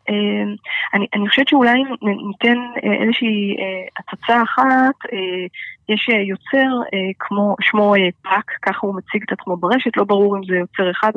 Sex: female